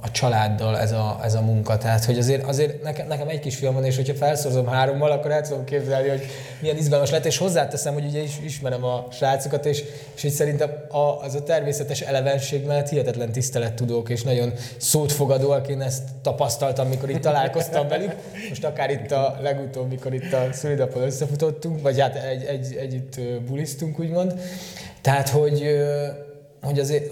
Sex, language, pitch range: male, Hungarian, 125-150 Hz